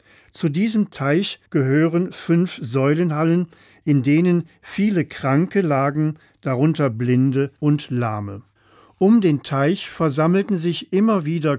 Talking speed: 115 wpm